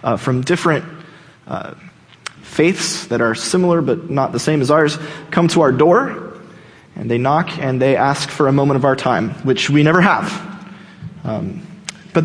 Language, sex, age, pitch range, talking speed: English, male, 20-39, 155-200 Hz, 175 wpm